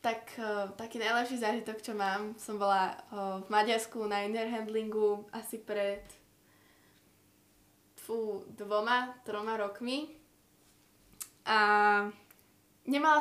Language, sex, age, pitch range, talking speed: Slovak, female, 10-29, 220-280 Hz, 105 wpm